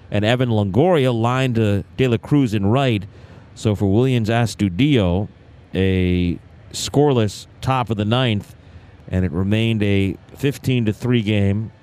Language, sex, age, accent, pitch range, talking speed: English, male, 40-59, American, 110-135 Hz, 130 wpm